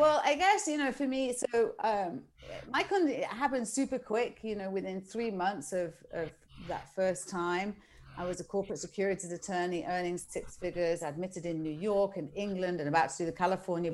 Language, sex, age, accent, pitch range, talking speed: English, female, 40-59, British, 160-200 Hz, 195 wpm